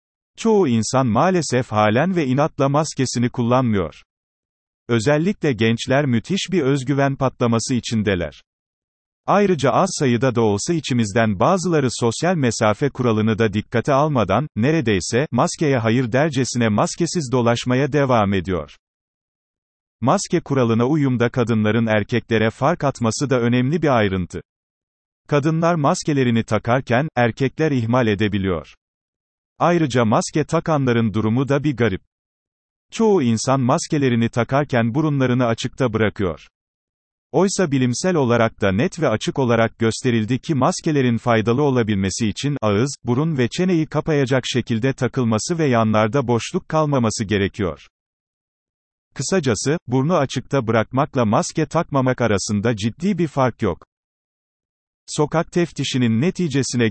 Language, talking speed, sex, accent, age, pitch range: Turkish, 115 wpm, male, native, 40-59, 115-150 Hz